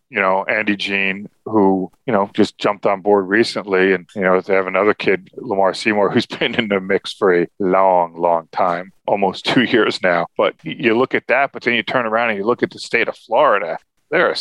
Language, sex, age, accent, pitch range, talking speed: English, male, 40-59, American, 95-110 Hz, 230 wpm